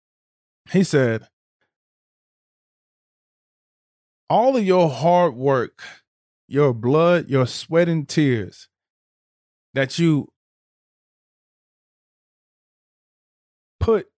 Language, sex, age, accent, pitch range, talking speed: English, male, 20-39, American, 120-160 Hz, 70 wpm